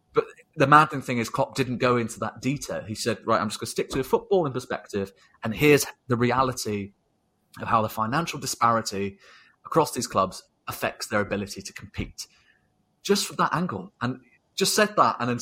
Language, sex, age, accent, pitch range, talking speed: English, male, 30-49, British, 105-130 Hz, 190 wpm